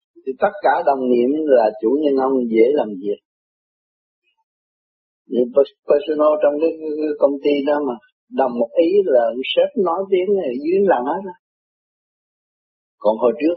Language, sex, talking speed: Vietnamese, male, 150 wpm